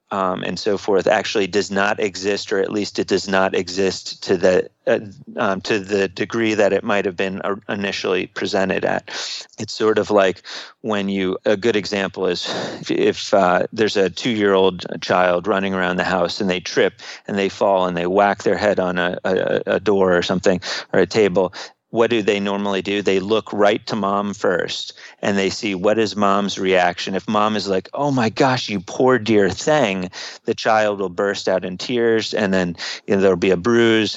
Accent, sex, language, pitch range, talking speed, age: American, male, English, 95-110 Hz, 210 wpm, 30-49